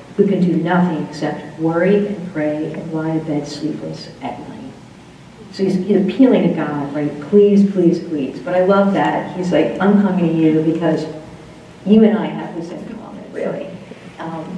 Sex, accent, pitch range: female, American, 160-195 Hz